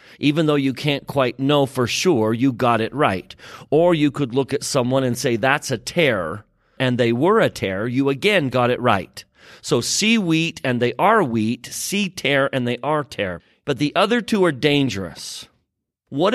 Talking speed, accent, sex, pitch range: 195 wpm, American, male, 115-150 Hz